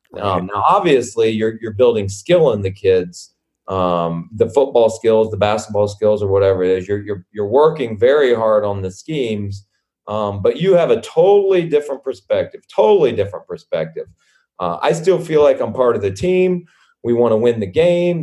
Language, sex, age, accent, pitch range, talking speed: English, male, 30-49, American, 110-180 Hz, 190 wpm